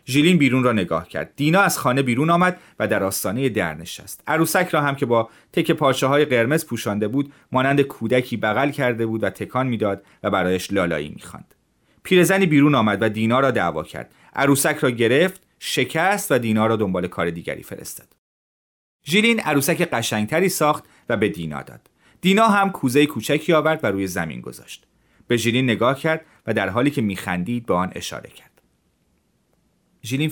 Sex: male